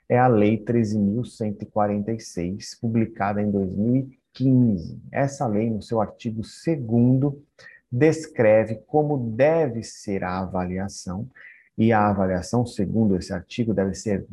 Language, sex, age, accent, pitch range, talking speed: Portuguese, male, 50-69, Brazilian, 100-130 Hz, 115 wpm